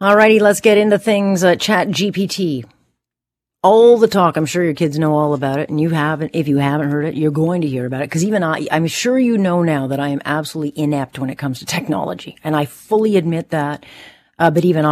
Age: 40-59